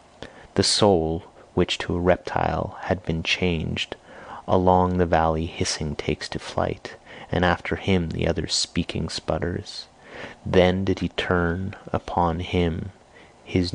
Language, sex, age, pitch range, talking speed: English, male, 30-49, 80-90 Hz, 130 wpm